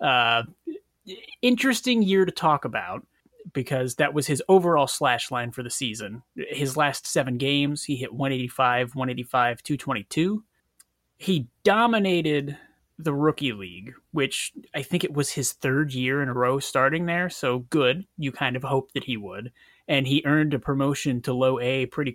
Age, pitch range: 30-49, 125-155 Hz